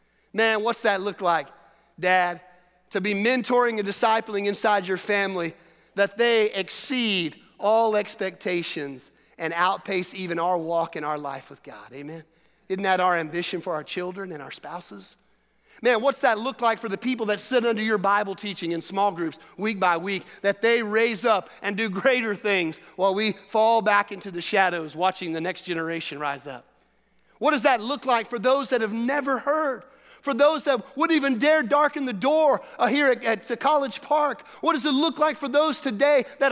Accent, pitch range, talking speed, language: American, 175-260 Hz, 190 wpm, English